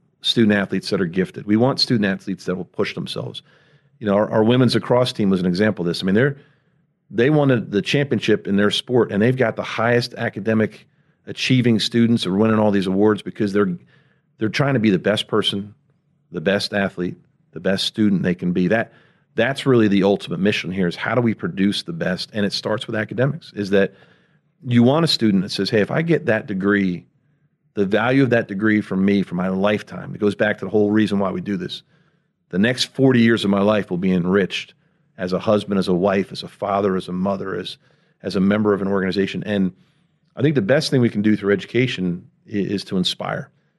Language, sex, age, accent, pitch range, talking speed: English, male, 40-59, American, 100-130 Hz, 225 wpm